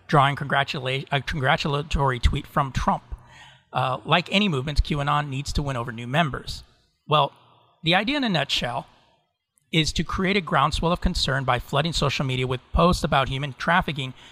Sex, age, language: male, 30-49, English